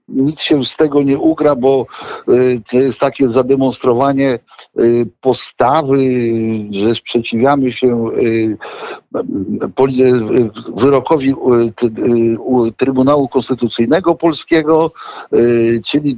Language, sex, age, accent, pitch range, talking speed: Polish, male, 50-69, native, 115-145 Hz, 75 wpm